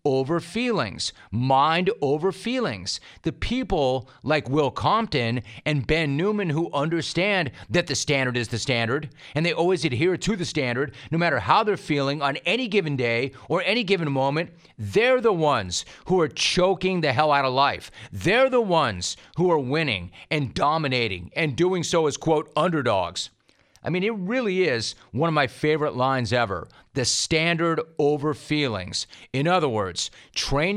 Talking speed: 165 wpm